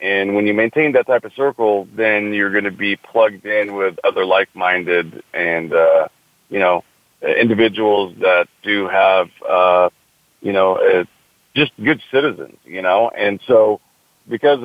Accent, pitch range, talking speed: American, 100-120 Hz, 160 wpm